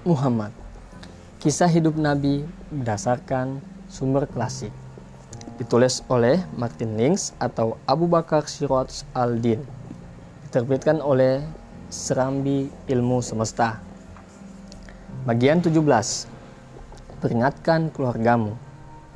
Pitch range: 115-150 Hz